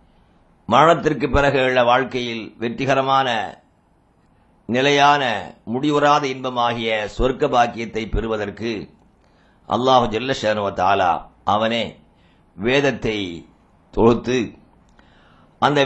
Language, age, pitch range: English, 50-69, 110-145 Hz